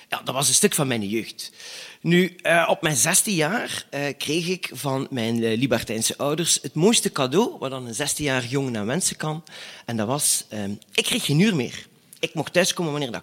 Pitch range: 115-170 Hz